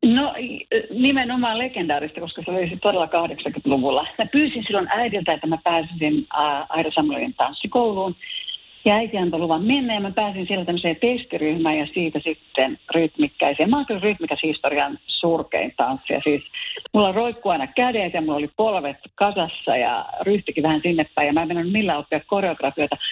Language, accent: Finnish, native